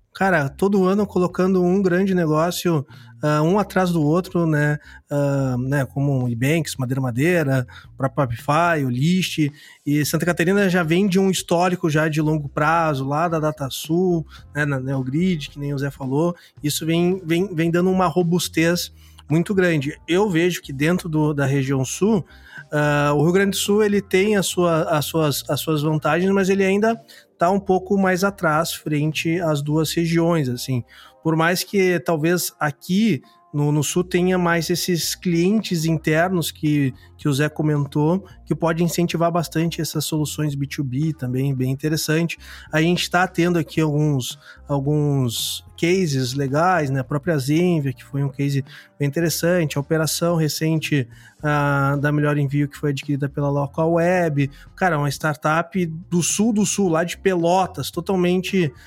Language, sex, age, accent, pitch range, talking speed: Portuguese, male, 20-39, Brazilian, 145-175 Hz, 165 wpm